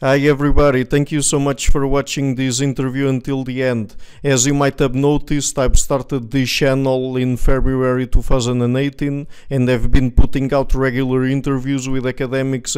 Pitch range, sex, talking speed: 130-145 Hz, male, 165 wpm